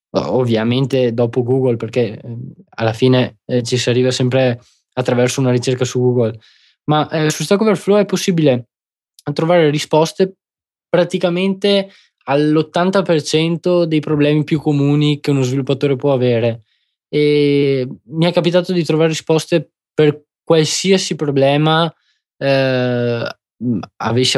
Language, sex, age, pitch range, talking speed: Italian, male, 20-39, 125-160 Hz, 115 wpm